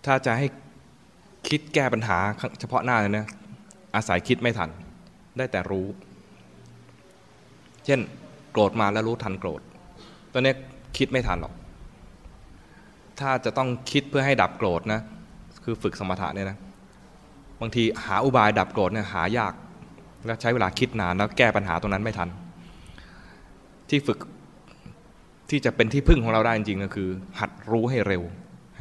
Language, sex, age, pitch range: English, male, 20-39, 95-120 Hz